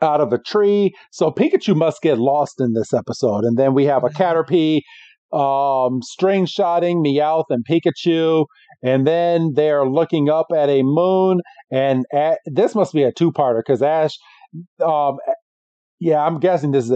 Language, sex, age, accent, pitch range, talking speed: English, male, 40-59, American, 135-175 Hz, 165 wpm